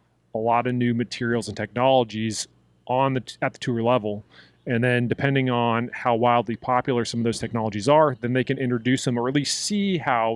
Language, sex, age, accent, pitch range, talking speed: English, male, 30-49, American, 110-130 Hz, 205 wpm